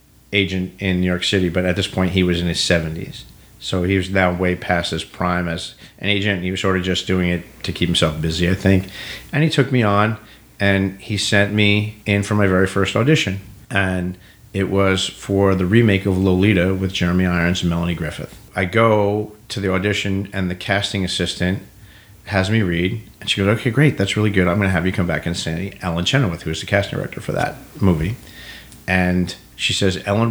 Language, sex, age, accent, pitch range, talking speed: English, male, 40-59, American, 90-105 Hz, 220 wpm